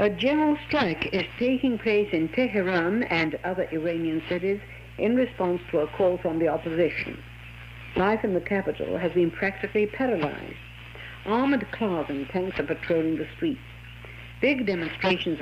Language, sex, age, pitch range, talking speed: Italian, female, 60-79, 145-195 Hz, 150 wpm